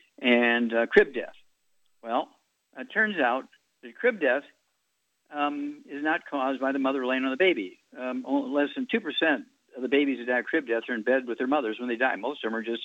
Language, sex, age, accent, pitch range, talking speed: English, male, 60-79, American, 125-180 Hz, 225 wpm